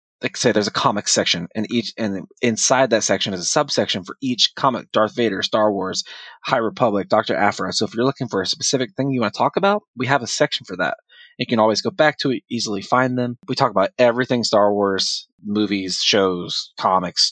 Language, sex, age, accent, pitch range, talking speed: English, male, 20-39, American, 105-140 Hz, 220 wpm